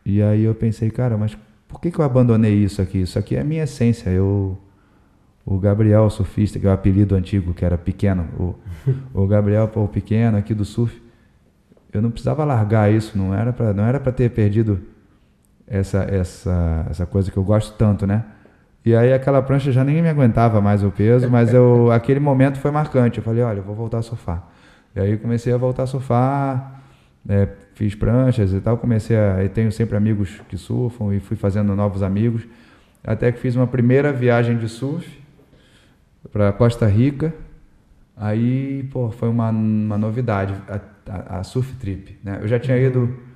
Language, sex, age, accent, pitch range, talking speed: Portuguese, male, 10-29, Brazilian, 100-125 Hz, 190 wpm